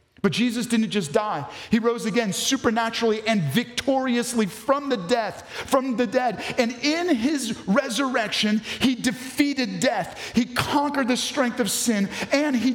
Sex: male